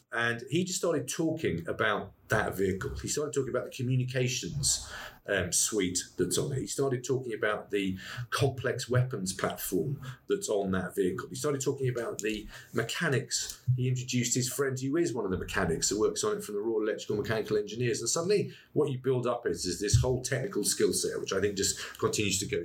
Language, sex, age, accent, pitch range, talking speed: English, male, 40-59, British, 115-145 Hz, 205 wpm